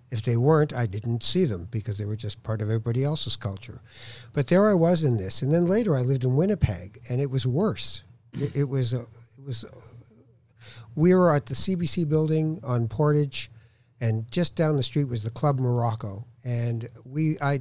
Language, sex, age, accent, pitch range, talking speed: English, male, 60-79, American, 115-145 Hz, 200 wpm